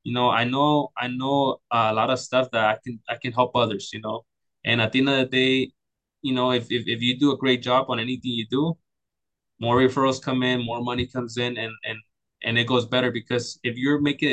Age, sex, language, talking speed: 20-39, male, English, 245 wpm